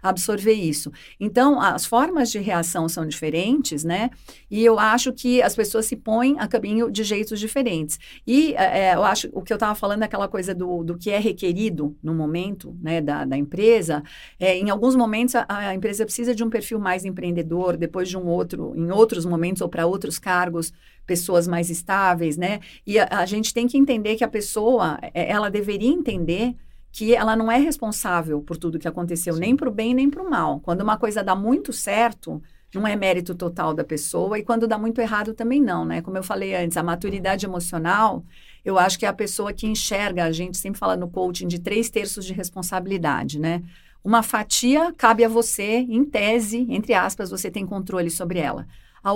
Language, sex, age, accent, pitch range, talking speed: Portuguese, female, 50-69, Brazilian, 175-230 Hz, 205 wpm